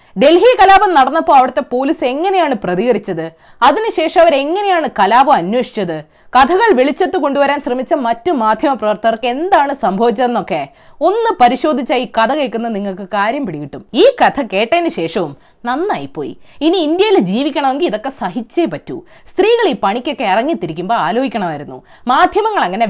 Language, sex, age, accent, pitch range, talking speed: Malayalam, female, 20-39, native, 225-355 Hz, 115 wpm